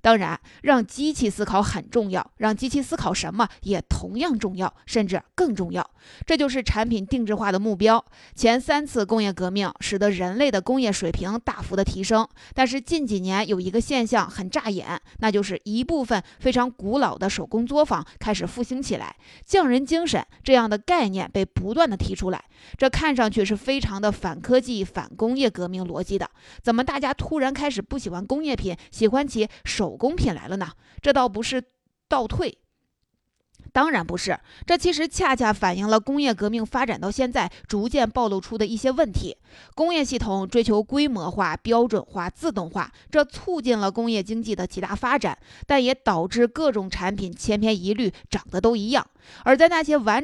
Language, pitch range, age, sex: Chinese, 200-265 Hz, 20-39, female